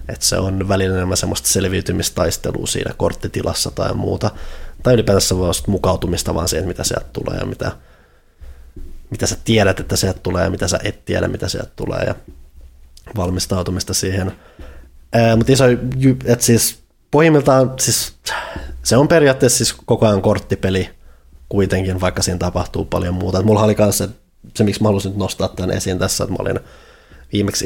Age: 20-39